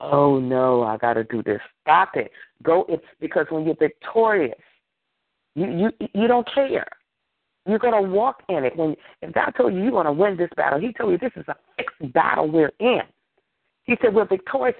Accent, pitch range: American, 140-220 Hz